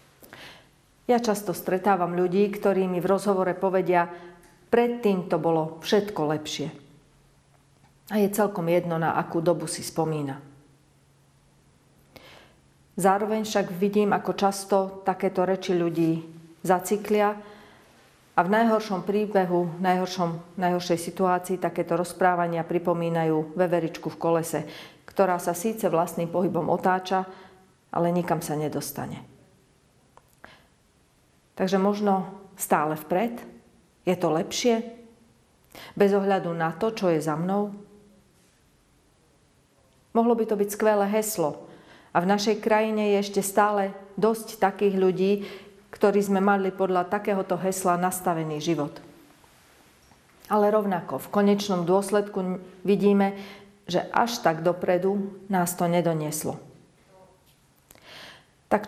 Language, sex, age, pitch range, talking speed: Slovak, female, 40-59, 170-200 Hz, 110 wpm